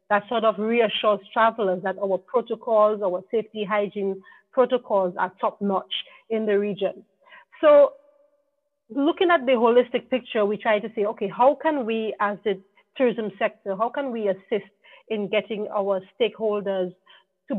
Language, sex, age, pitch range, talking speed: English, female, 40-59, 200-250 Hz, 150 wpm